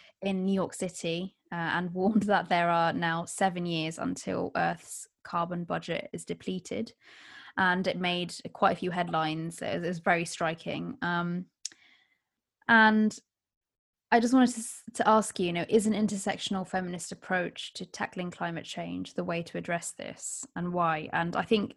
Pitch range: 170-190 Hz